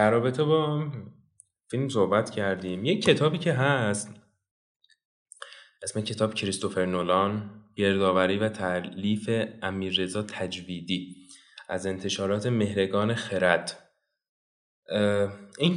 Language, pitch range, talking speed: Persian, 100-140 Hz, 90 wpm